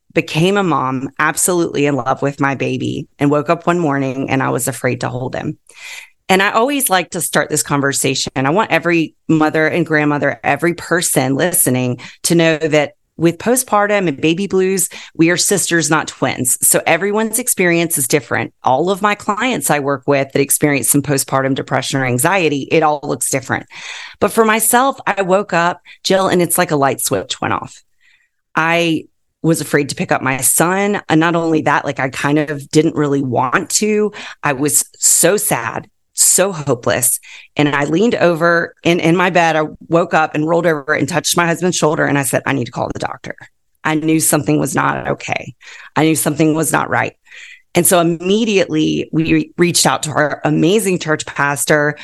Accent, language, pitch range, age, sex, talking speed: American, English, 145-180 Hz, 30-49, female, 195 wpm